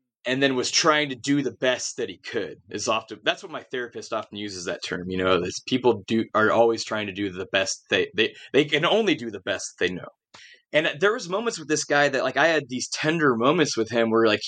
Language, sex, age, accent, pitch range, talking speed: English, male, 20-39, American, 105-135 Hz, 250 wpm